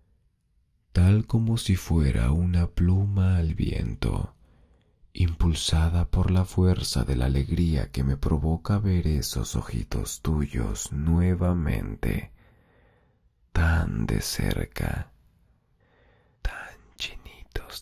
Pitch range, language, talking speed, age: 80-100 Hz, Spanish, 95 wpm, 40-59